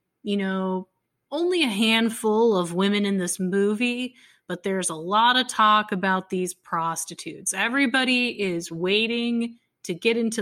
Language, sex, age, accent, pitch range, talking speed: English, female, 30-49, American, 185-225 Hz, 145 wpm